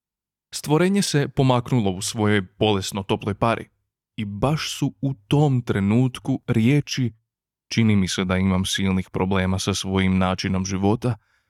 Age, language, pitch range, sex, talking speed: 20-39, Croatian, 100-125 Hz, male, 130 wpm